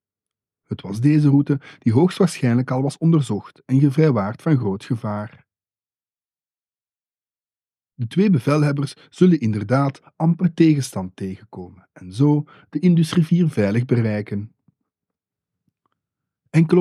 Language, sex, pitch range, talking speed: English, male, 105-150 Hz, 105 wpm